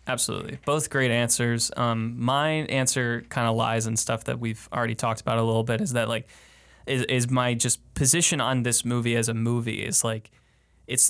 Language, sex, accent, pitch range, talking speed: English, male, American, 115-130 Hz, 200 wpm